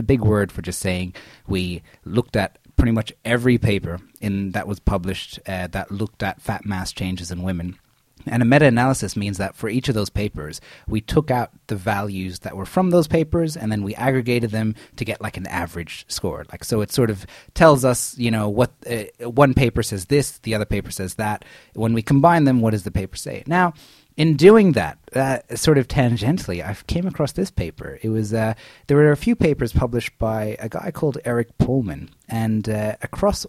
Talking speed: 210 wpm